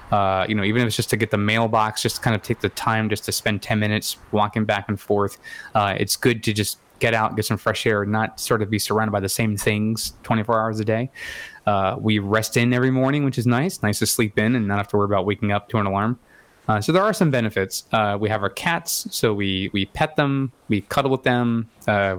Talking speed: 260 wpm